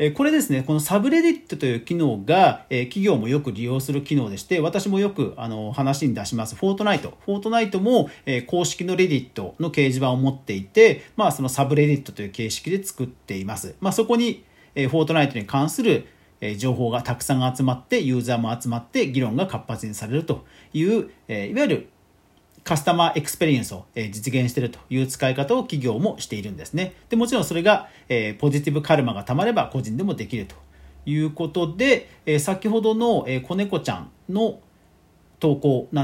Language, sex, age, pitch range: Japanese, male, 40-59, 120-185 Hz